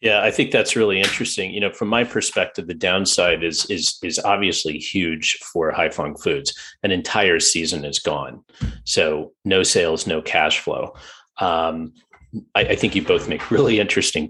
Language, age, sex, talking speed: English, 40-59, male, 170 wpm